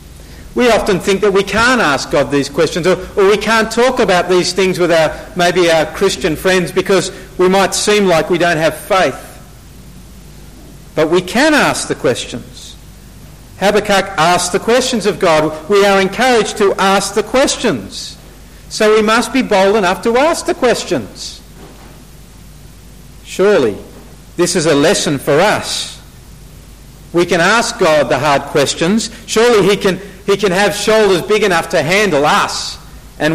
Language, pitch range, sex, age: English, 160-215 Hz, male, 50-69